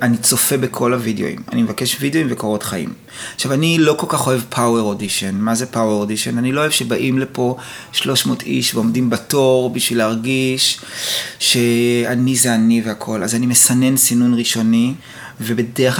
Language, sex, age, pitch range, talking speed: Hebrew, male, 30-49, 115-145 Hz, 160 wpm